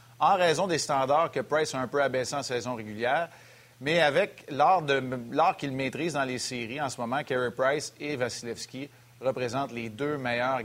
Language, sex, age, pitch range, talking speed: French, male, 40-59, 125-155 Hz, 190 wpm